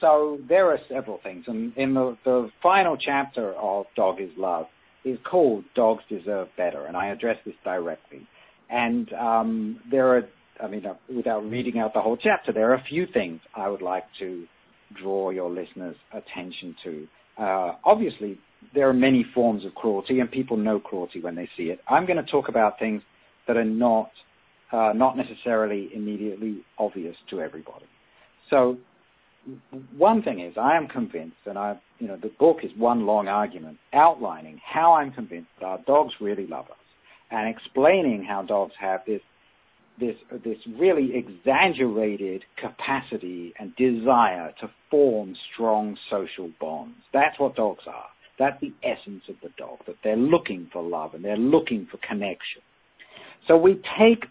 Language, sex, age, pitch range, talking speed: English, male, 60-79, 100-130 Hz, 165 wpm